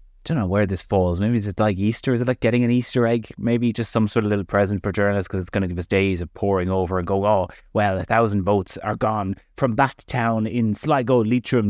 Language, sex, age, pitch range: English, male, 20-39, 95-120 Hz